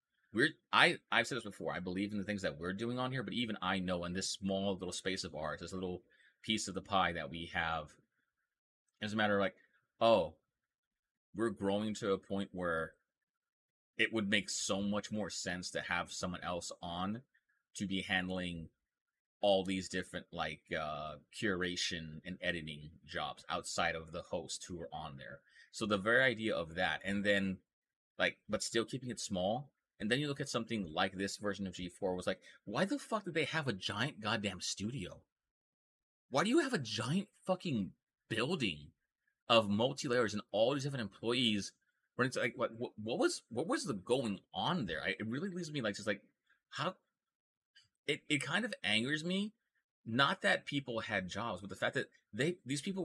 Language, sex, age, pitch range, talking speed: English, male, 30-49, 90-120 Hz, 190 wpm